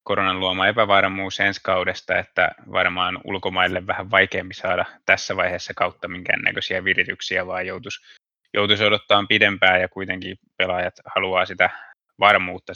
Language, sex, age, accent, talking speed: Finnish, male, 20-39, native, 125 wpm